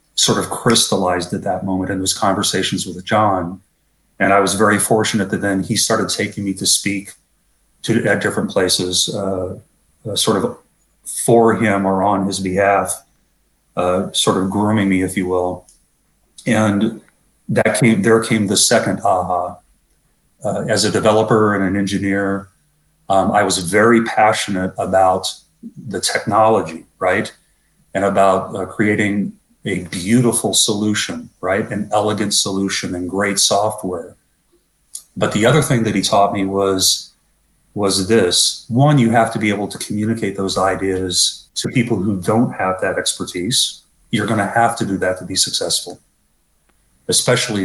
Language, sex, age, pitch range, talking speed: Polish, male, 40-59, 95-115 Hz, 155 wpm